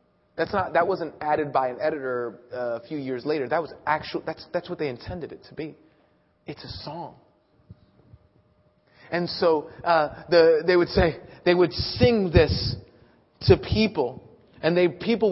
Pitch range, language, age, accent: 135-175 Hz, English, 30-49, American